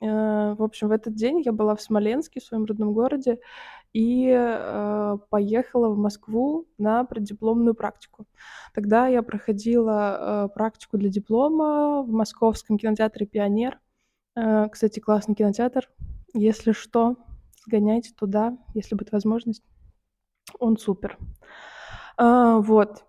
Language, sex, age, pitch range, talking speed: Russian, female, 20-39, 210-240 Hz, 110 wpm